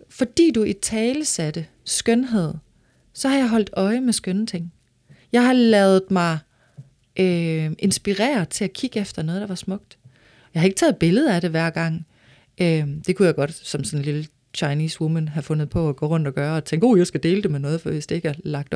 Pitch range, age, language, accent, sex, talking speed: 160-215 Hz, 30-49, Danish, native, female, 230 wpm